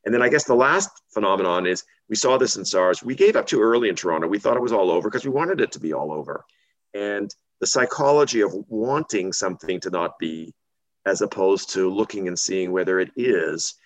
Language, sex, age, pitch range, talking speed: English, male, 40-59, 90-155 Hz, 225 wpm